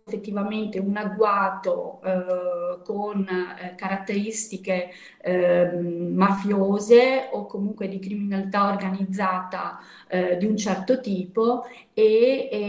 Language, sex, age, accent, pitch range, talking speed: Italian, female, 30-49, native, 185-225 Hz, 95 wpm